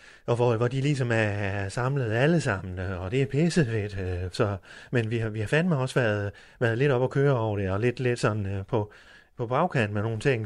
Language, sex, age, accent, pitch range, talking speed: Danish, male, 30-49, native, 105-135 Hz, 235 wpm